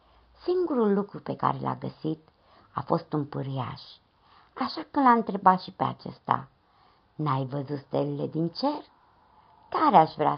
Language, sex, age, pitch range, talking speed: Romanian, male, 60-79, 140-225 Hz, 145 wpm